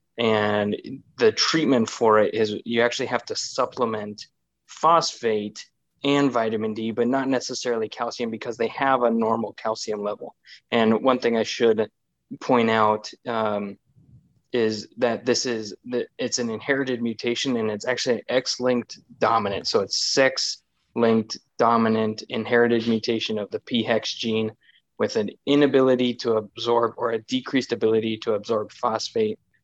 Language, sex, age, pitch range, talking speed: English, male, 20-39, 110-125 Hz, 140 wpm